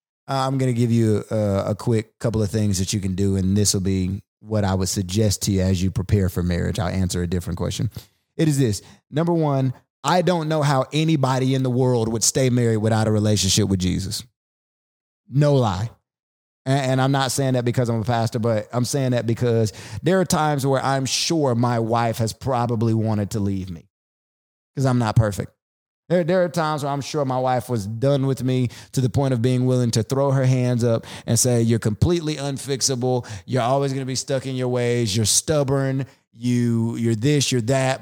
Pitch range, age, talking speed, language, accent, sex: 110-135 Hz, 30-49, 215 wpm, English, American, male